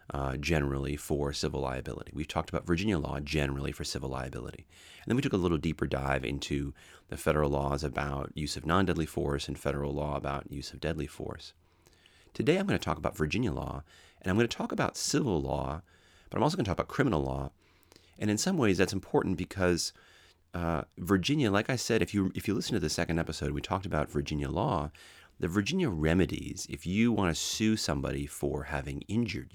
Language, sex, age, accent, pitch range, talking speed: English, male, 30-49, American, 70-95 Hz, 205 wpm